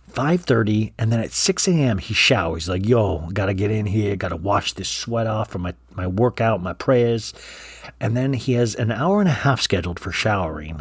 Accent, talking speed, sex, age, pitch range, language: American, 205 wpm, male, 40-59, 90-125 Hz, English